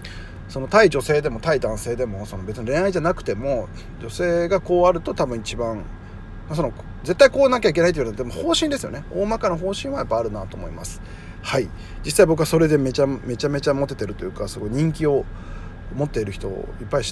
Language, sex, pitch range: Japanese, male, 95-160 Hz